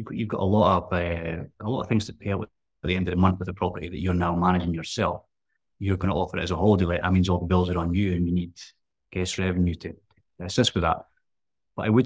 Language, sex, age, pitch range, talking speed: English, male, 30-49, 90-110 Hz, 275 wpm